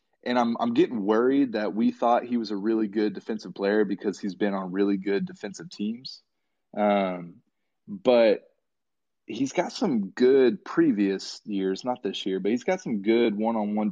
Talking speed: 175 wpm